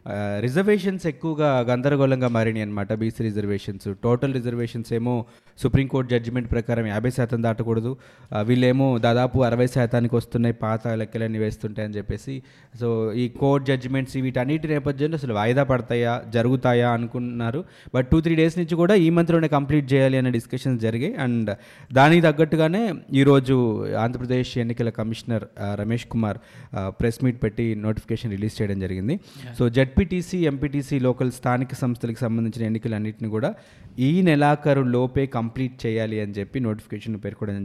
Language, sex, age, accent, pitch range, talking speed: Telugu, male, 20-39, native, 115-140 Hz, 130 wpm